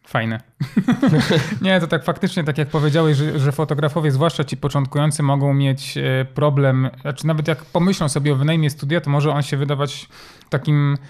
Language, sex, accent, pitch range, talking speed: Polish, male, native, 140-160 Hz, 160 wpm